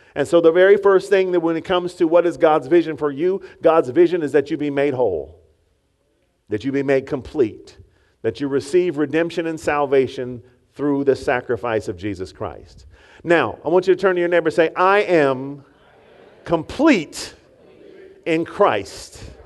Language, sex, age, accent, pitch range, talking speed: English, male, 40-59, American, 140-210 Hz, 180 wpm